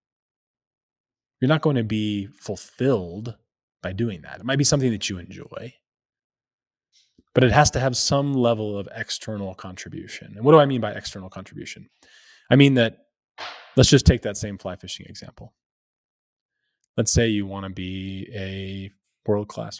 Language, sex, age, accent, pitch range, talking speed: English, male, 20-39, American, 95-115 Hz, 160 wpm